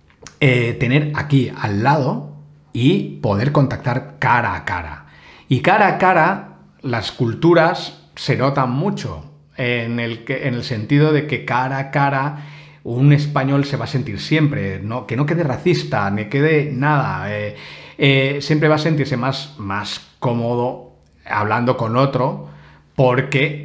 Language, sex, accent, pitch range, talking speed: Spanish, male, Spanish, 110-145 Hz, 145 wpm